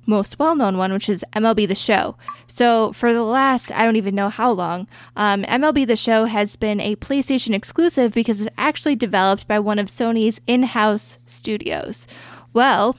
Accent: American